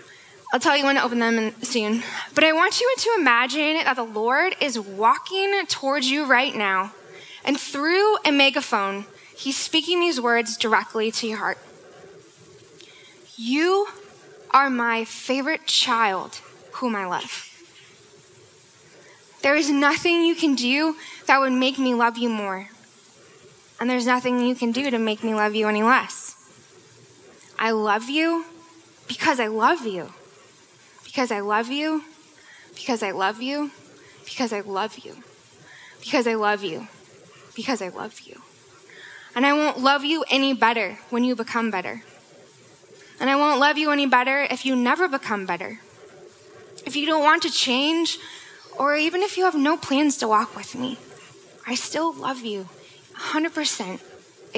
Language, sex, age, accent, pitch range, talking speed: English, female, 10-29, American, 230-315 Hz, 155 wpm